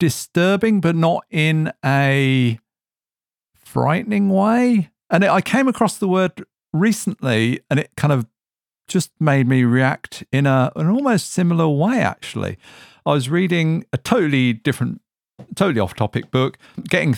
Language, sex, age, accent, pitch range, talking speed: English, male, 50-69, British, 115-160 Hz, 140 wpm